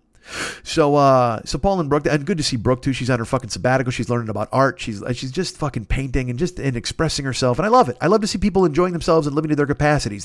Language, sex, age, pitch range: English, male, 40-59, 120-155 Hz